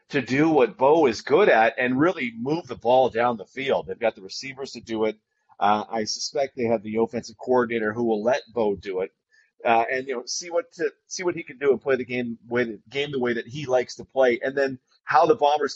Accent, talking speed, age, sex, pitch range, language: American, 250 wpm, 30-49, male, 115-140 Hz, English